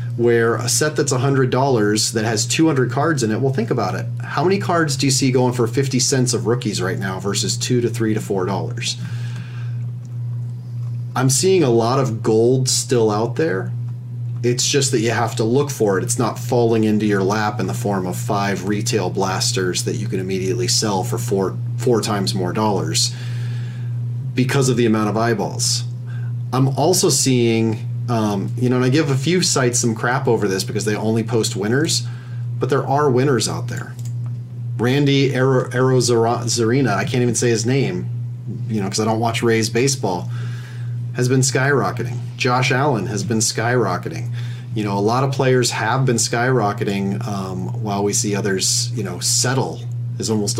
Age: 30-49